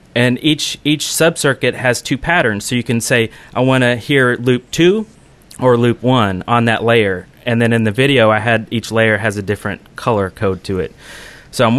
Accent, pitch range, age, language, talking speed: American, 115-145 Hz, 30-49, English, 210 wpm